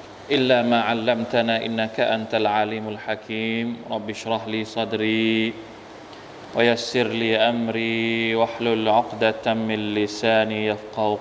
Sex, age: male, 20-39